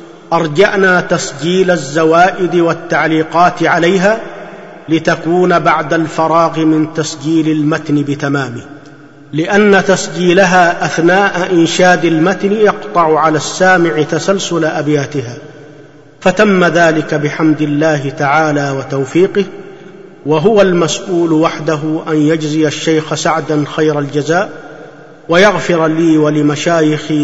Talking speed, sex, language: 90 wpm, male, Arabic